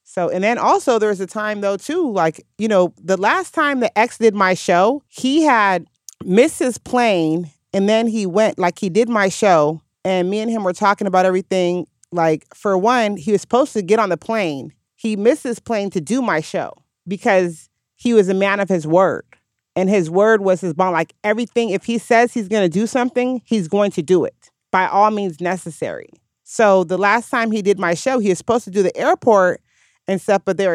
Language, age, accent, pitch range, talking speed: English, 40-59, American, 180-225 Hz, 225 wpm